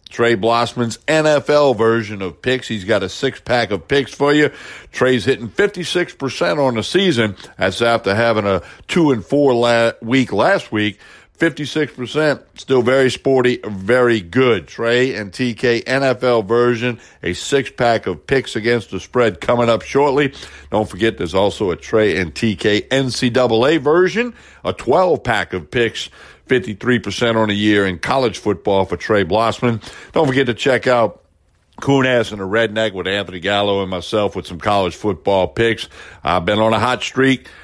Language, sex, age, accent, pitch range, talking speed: English, male, 60-79, American, 105-130 Hz, 165 wpm